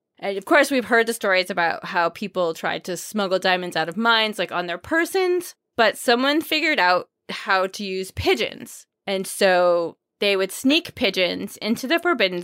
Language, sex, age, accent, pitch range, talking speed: English, female, 20-39, American, 180-235 Hz, 185 wpm